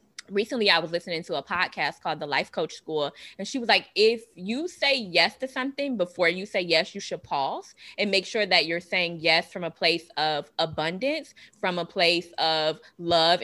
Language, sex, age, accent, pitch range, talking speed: English, female, 20-39, American, 165-200 Hz, 205 wpm